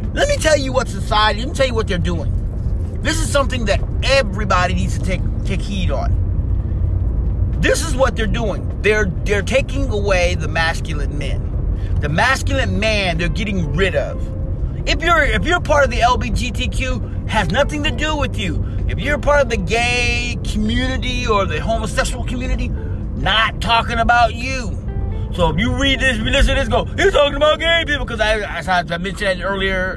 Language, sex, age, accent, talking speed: English, male, 30-49, American, 185 wpm